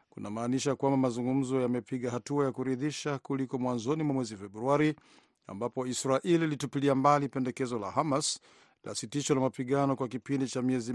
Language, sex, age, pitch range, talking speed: Swahili, male, 50-69, 120-140 Hz, 155 wpm